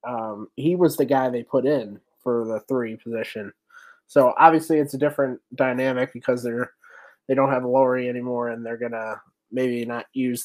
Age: 20-39